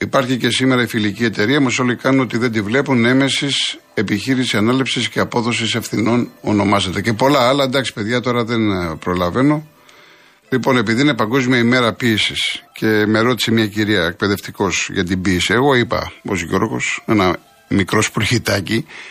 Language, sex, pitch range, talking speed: Greek, male, 105-135 Hz, 155 wpm